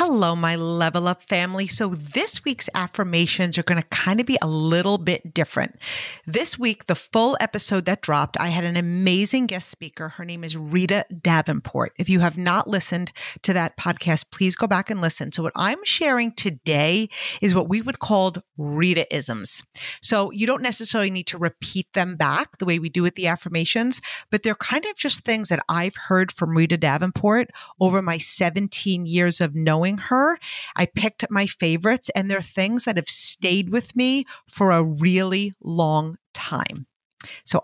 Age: 40-59